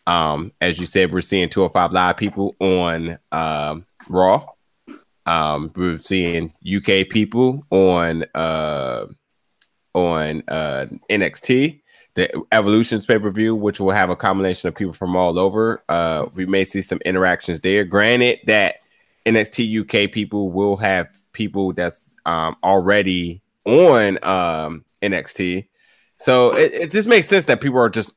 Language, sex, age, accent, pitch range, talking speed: English, male, 20-39, American, 90-120 Hz, 150 wpm